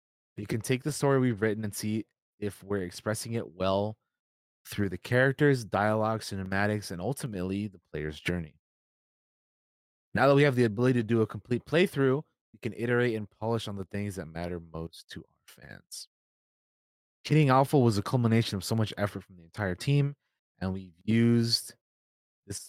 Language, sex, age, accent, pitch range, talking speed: English, male, 20-39, American, 90-115 Hz, 175 wpm